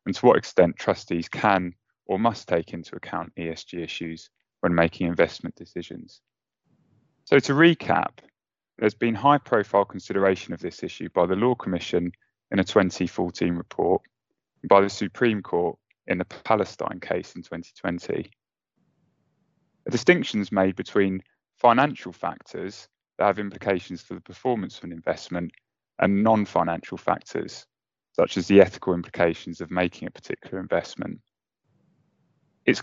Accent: British